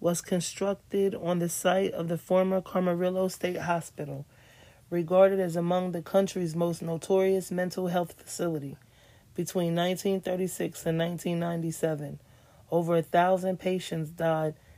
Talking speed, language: 120 wpm, English